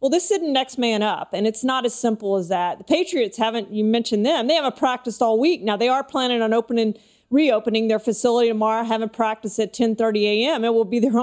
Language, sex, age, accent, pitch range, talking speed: English, female, 40-59, American, 220-255 Hz, 230 wpm